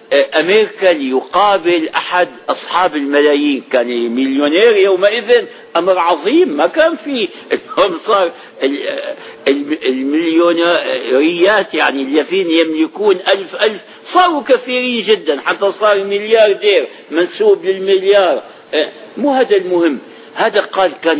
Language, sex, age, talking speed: Arabic, male, 60-79, 95 wpm